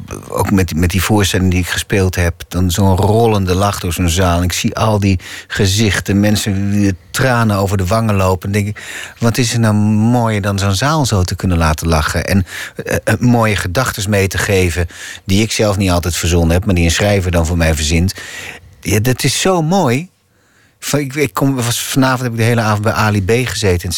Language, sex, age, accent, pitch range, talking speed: Dutch, male, 40-59, Dutch, 90-115 Hz, 225 wpm